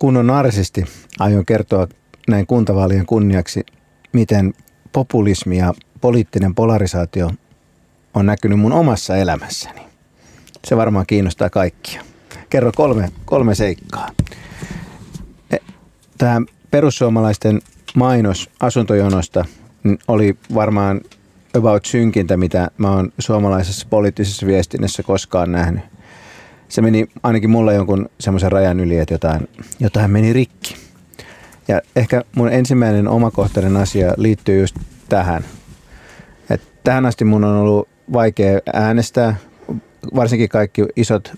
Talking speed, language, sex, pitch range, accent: 105 wpm, Finnish, male, 95-115 Hz, native